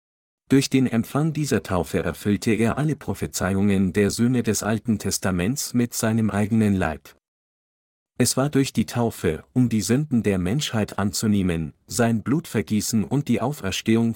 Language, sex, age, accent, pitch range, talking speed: German, male, 50-69, German, 100-120 Hz, 150 wpm